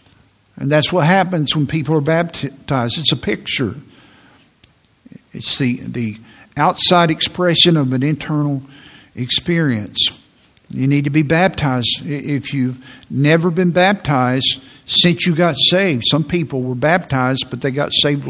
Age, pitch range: 60-79, 135-175 Hz